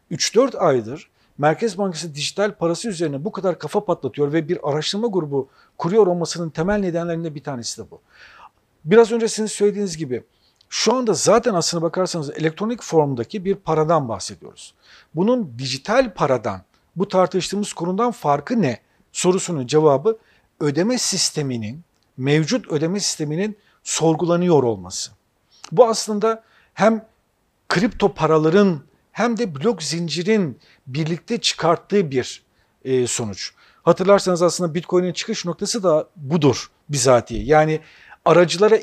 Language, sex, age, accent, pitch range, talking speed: Turkish, male, 50-69, native, 155-195 Hz, 120 wpm